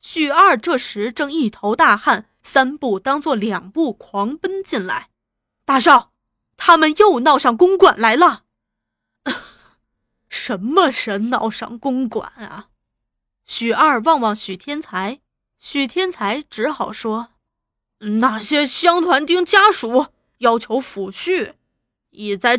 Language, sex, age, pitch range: Chinese, female, 20-39, 230-340 Hz